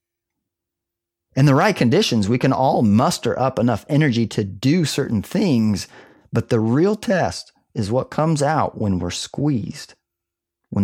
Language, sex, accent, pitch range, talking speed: English, male, American, 110-140 Hz, 150 wpm